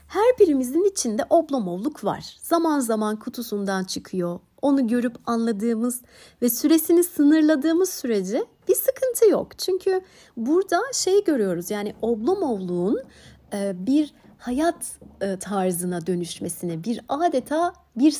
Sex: female